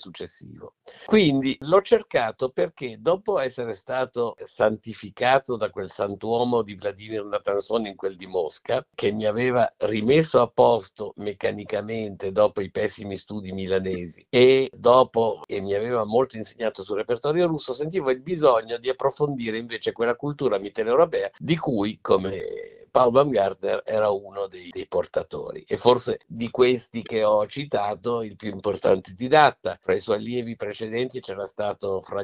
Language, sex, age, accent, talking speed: Italian, male, 50-69, native, 145 wpm